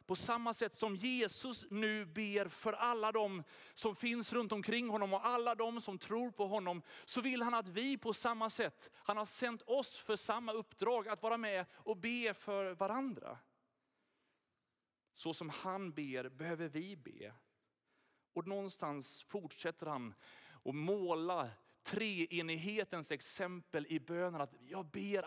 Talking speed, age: 155 wpm, 30-49